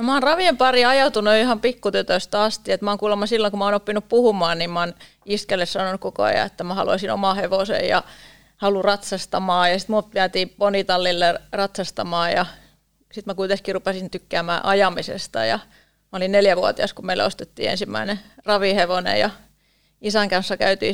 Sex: female